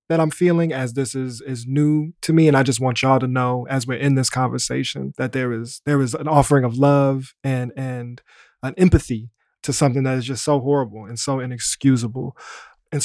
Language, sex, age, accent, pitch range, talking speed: English, male, 20-39, American, 130-155 Hz, 205 wpm